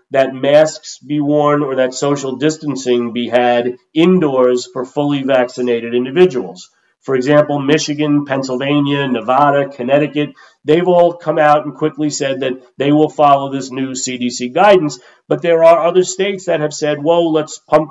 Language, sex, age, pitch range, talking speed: English, male, 40-59, 130-155 Hz, 160 wpm